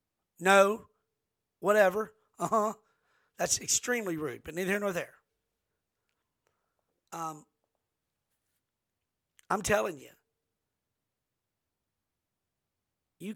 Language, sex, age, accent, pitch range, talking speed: English, male, 50-69, American, 175-235 Hz, 70 wpm